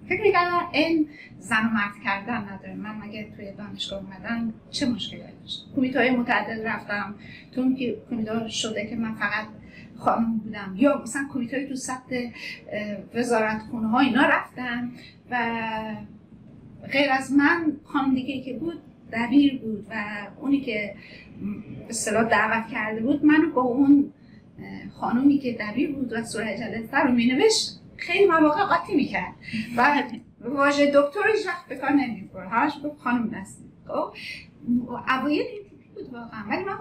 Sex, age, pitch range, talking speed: female, 30-49, 220-290 Hz, 140 wpm